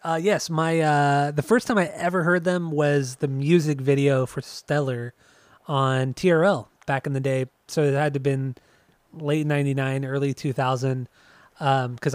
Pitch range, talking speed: 130-155 Hz, 180 wpm